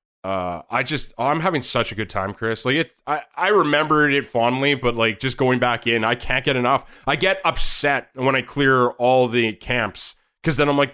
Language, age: English, 20-39